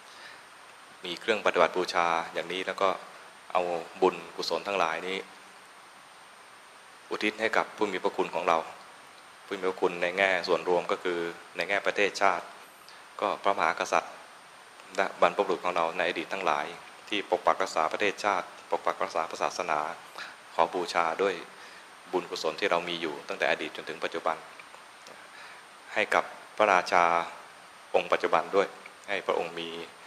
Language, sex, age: English, male, 20-39